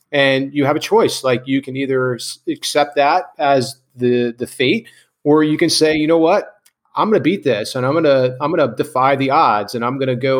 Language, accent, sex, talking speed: English, American, male, 240 wpm